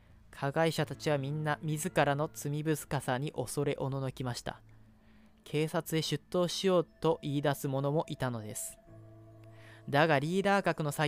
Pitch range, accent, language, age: 135-160 Hz, native, Japanese, 20-39